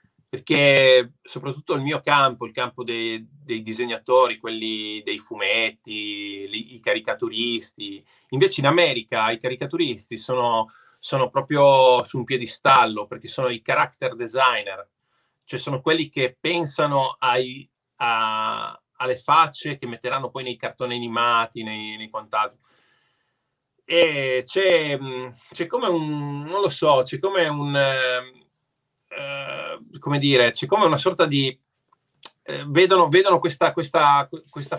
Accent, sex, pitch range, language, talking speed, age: native, male, 125-160 Hz, Italian, 130 wpm, 30-49